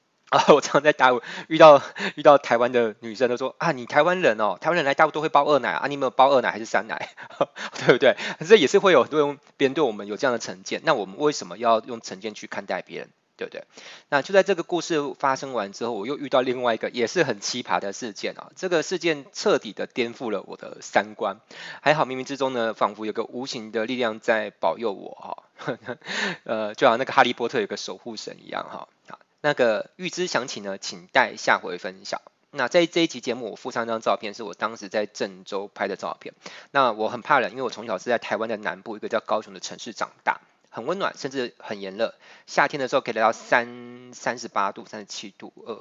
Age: 20-39